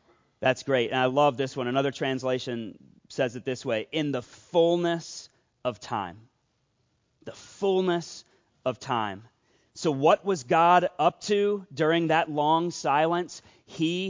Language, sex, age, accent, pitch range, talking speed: English, male, 30-49, American, 130-165 Hz, 140 wpm